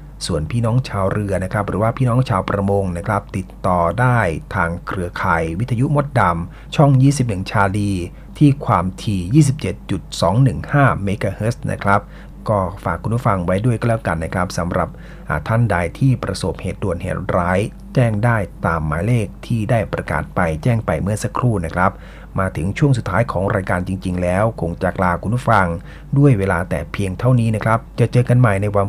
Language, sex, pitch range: Thai, male, 90-120 Hz